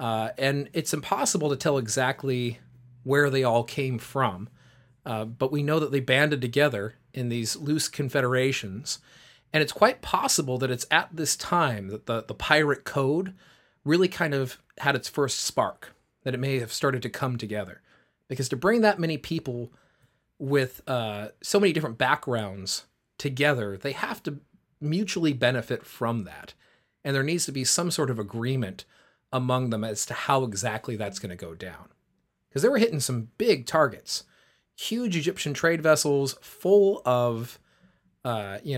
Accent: American